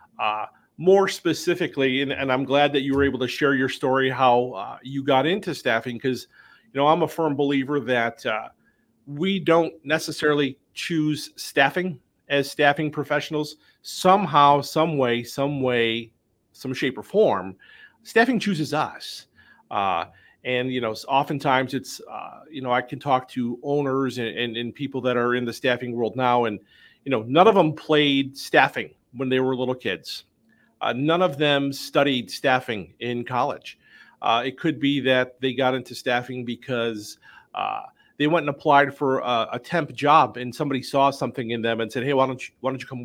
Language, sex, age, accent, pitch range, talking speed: English, male, 40-59, American, 125-150 Hz, 185 wpm